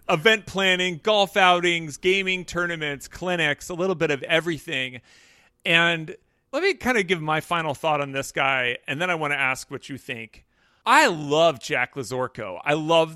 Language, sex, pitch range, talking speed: English, male, 140-185 Hz, 180 wpm